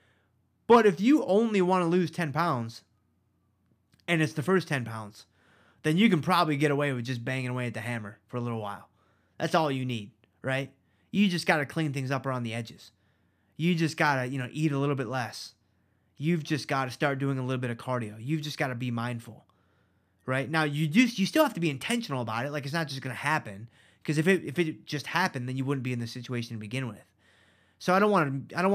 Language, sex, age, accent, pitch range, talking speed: English, male, 20-39, American, 110-160 Hz, 245 wpm